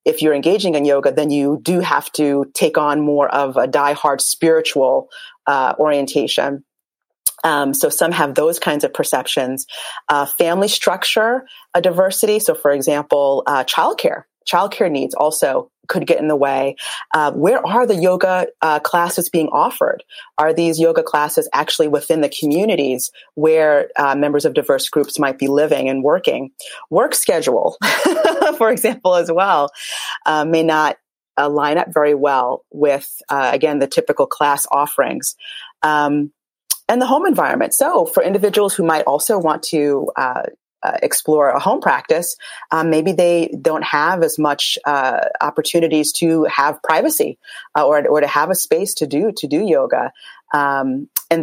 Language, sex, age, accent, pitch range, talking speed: English, female, 30-49, American, 145-245 Hz, 160 wpm